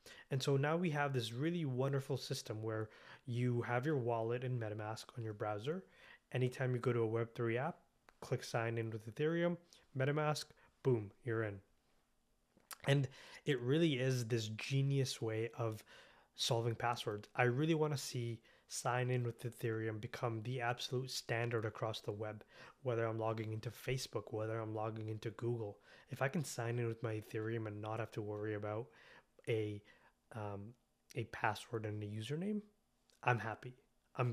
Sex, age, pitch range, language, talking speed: male, 20-39, 110-130 Hz, English, 165 wpm